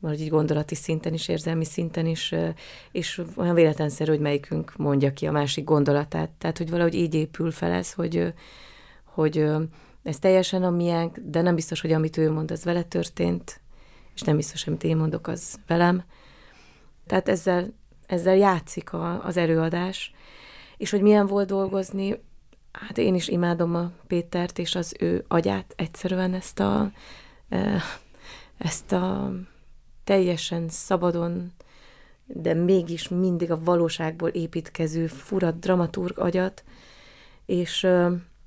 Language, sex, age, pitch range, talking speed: Hungarian, female, 30-49, 155-180 Hz, 140 wpm